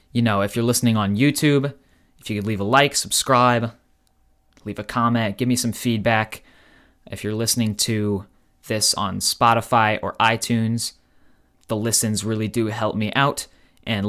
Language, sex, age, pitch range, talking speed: English, male, 20-39, 100-120 Hz, 160 wpm